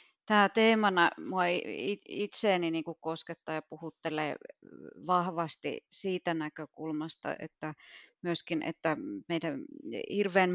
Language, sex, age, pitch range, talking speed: Finnish, female, 30-49, 165-185 Hz, 95 wpm